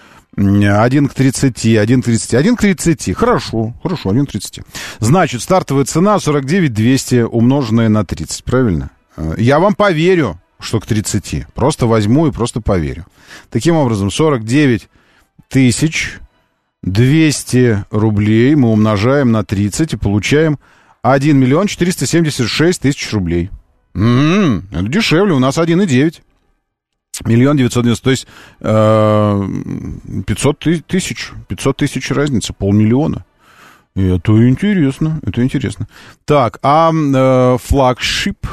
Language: Russian